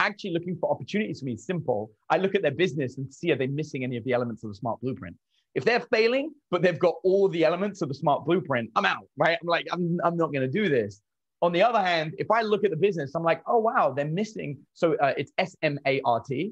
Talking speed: 260 wpm